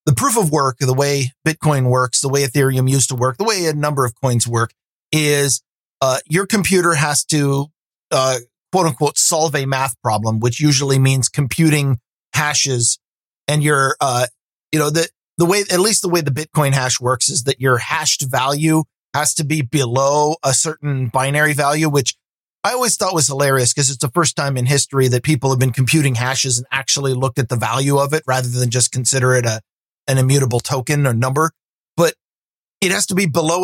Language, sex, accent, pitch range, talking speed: English, male, American, 130-155 Hz, 200 wpm